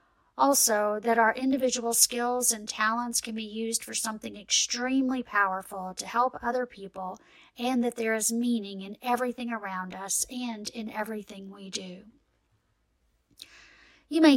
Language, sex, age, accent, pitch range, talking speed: English, female, 40-59, American, 200-250 Hz, 140 wpm